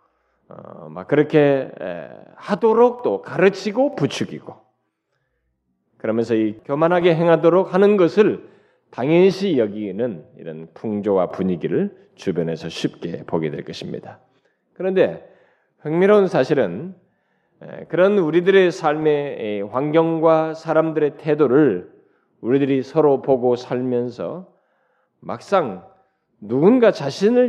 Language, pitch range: Korean, 120-195 Hz